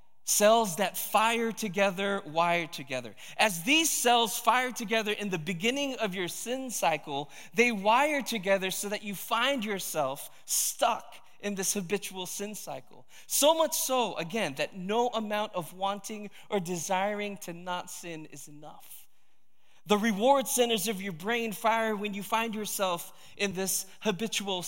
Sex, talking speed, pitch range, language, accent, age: male, 150 wpm, 175-220 Hz, English, American, 20-39